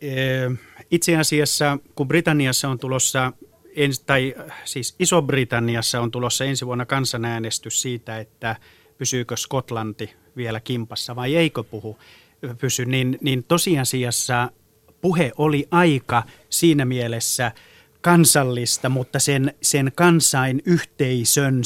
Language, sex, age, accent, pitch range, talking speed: Finnish, male, 30-49, native, 120-150 Hz, 105 wpm